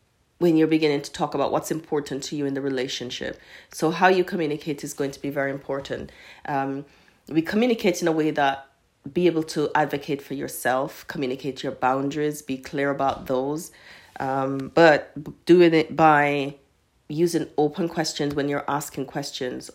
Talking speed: 165 wpm